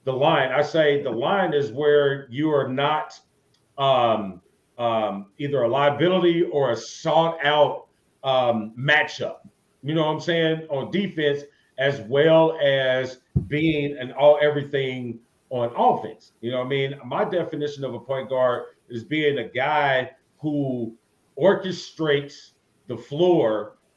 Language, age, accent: English, 40-59, American